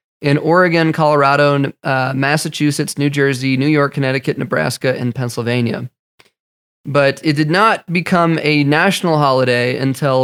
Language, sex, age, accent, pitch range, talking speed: English, male, 20-39, American, 125-150 Hz, 130 wpm